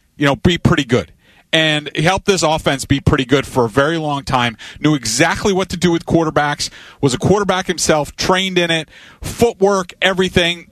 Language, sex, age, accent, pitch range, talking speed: English, male, 40-59, American, 155-200 Hz, 190 wpm